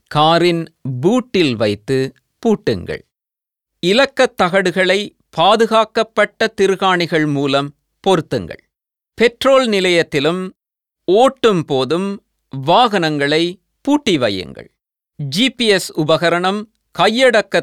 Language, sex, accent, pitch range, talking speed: Tamil, male, native, 155-215 Hz, 65 wpm